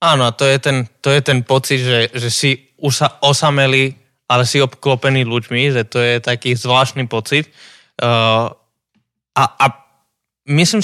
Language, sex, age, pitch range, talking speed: Slovak, male, 20-39, 115-145 Hz, 145 wpm